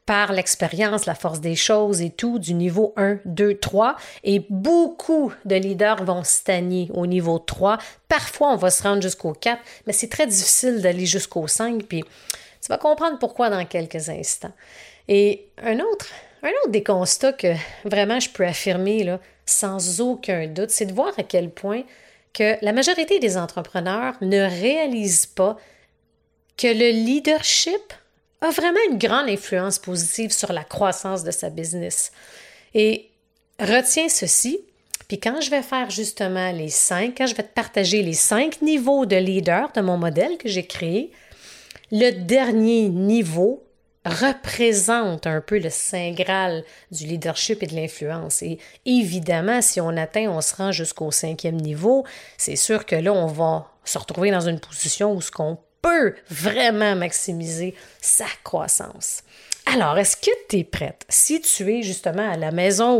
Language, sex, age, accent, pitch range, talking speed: French, female, 30-49, Canadian, 180-235 Hz, 165 wpm